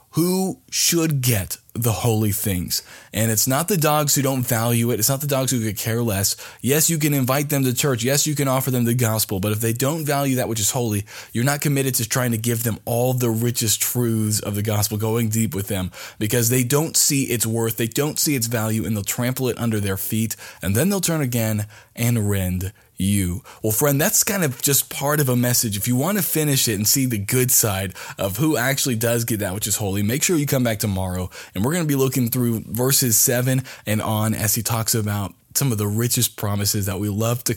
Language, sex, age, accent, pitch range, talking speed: English, male, 20-39, American, 105-130 Hz, 240 wpm